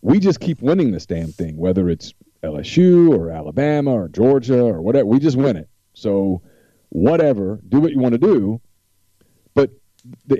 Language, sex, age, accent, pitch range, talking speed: English, male, 40-59, American, 90-110 Hz, 175 wpm